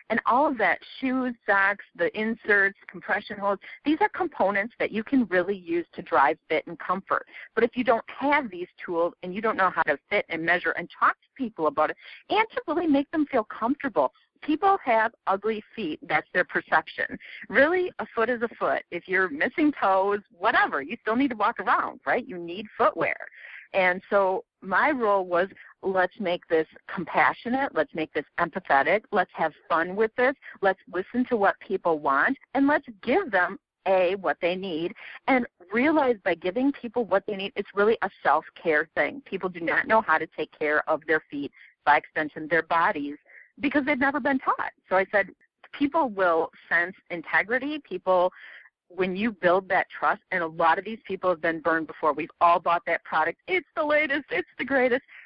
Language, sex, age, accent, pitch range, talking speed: English, female, 50-69, American, 170-255 Hz, 195 wpm